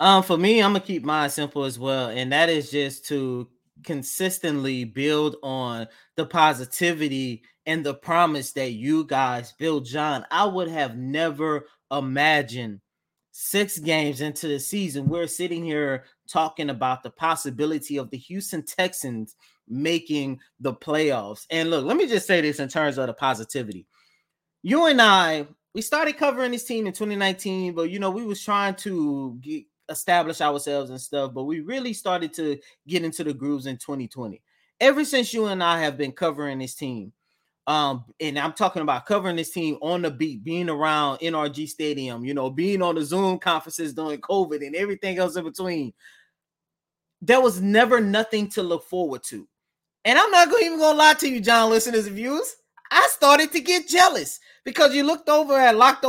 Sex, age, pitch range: male, 20-39, 140-200 Hz